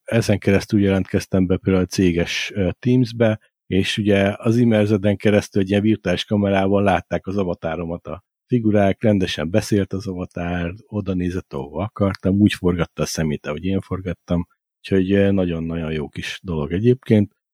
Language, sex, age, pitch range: Hungarian, male, 50-69, 90-110 Hz